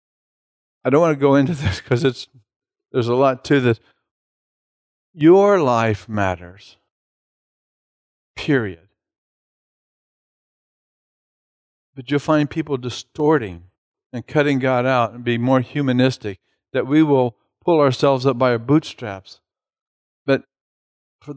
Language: English